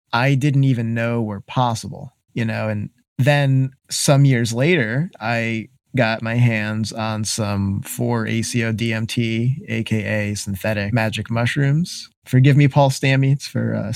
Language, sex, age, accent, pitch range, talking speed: English, male, 20-39, American, 115-150 Hz, 140 wpm